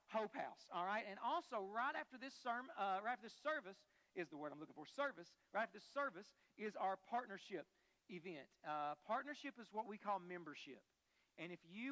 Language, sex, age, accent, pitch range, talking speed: English, male, 40-59, American, 185-230 Hz, 200 wpm